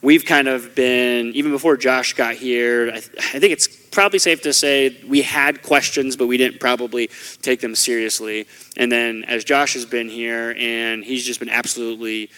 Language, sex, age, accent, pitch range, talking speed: English, male, 30-49, American, 120-140 Hz, 195 wpm